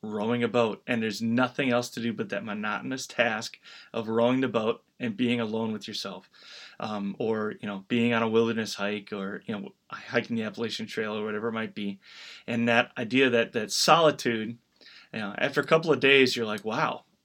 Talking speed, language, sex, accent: 205 wpm, English, male, American